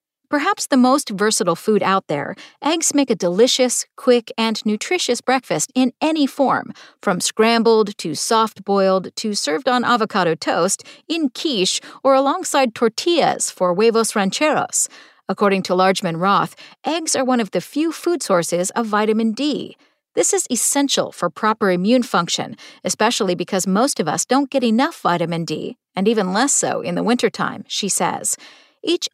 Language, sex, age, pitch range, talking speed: English, female, 50-69, 190-270 Hz, 160 wpm